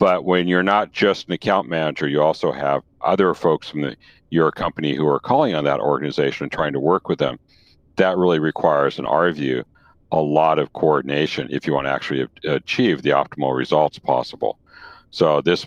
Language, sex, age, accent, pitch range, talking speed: English, male, 60-79, American, 75-90 Hz, 190 wpm